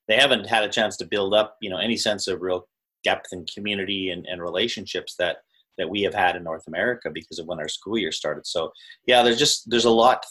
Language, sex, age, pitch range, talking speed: English, male, 30-49, 95-120 Hz, 250 wpm